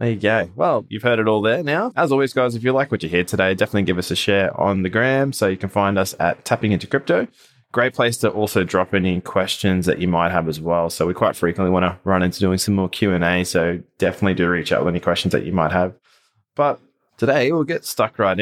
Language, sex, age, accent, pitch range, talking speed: English, male, 20-39, Australian, 90-115 Hz, 265 wpm